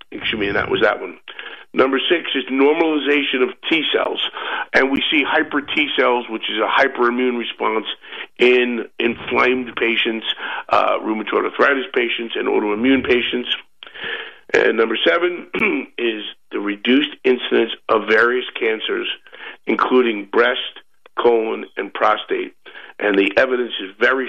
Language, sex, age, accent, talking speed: English, male, 50-69, American, 125 wpm